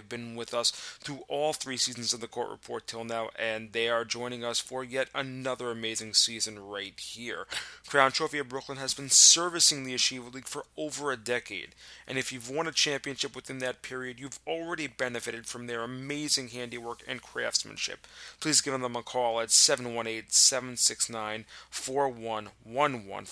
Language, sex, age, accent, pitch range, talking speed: English, male, 30-49, American, 115-140 Hz, 165 wpm